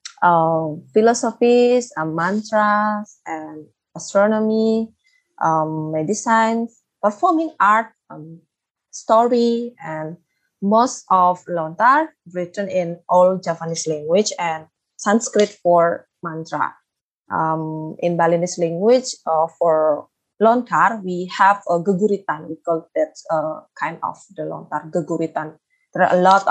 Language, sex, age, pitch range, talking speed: English, female, 20-39, 165-230 Hz, 115 wpm